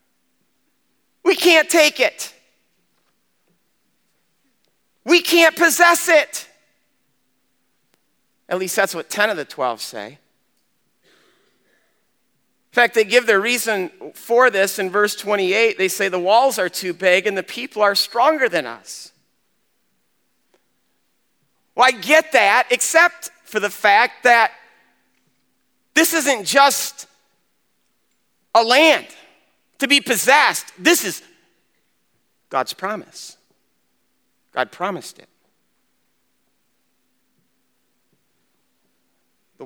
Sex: male